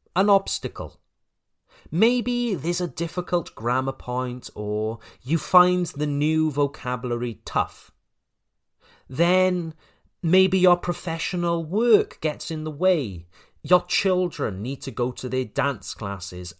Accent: British